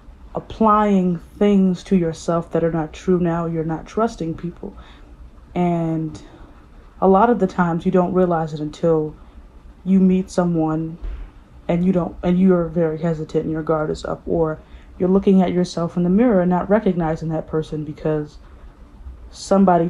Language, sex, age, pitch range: English, female, 20-39, 155-185 Hz